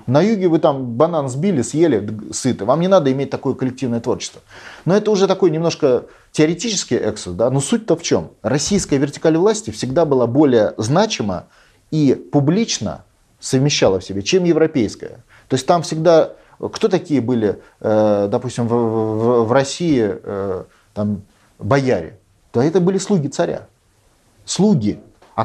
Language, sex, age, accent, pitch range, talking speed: Russian, male, 30-49, native, 115-165 Hz, 145 wpm